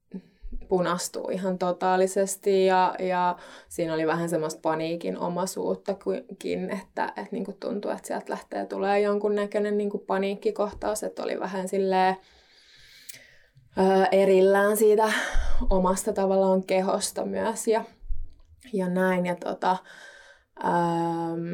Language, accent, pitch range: Finnish, native, 175-205 Hz